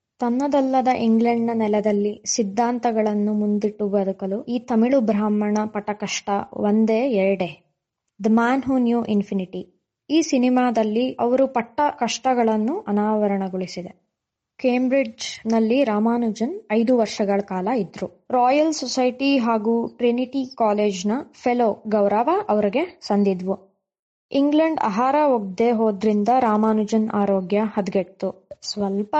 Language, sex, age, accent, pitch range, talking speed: Kannada, female, 20-39, native, 205-250 Hz, 95 wpm